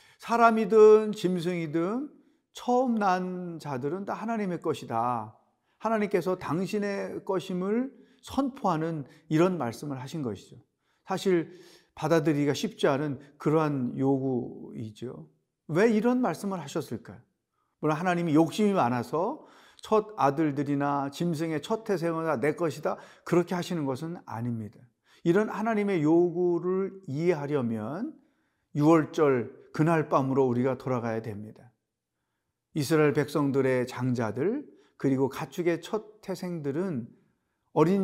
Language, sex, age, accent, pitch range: Korean, male, 40-59, native, 135-195 Hz